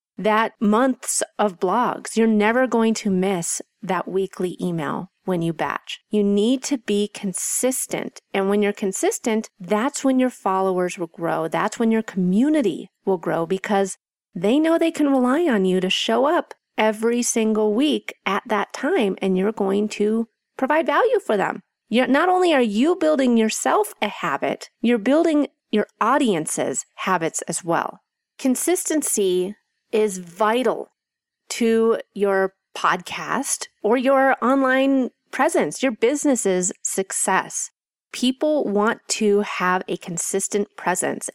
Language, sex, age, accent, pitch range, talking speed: English, female, 40-59, American, 195-255 Hz, 140 wpm